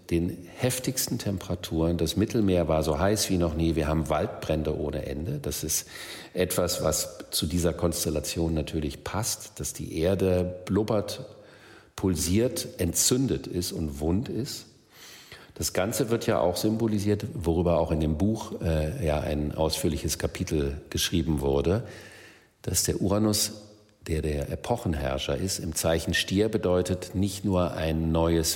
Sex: male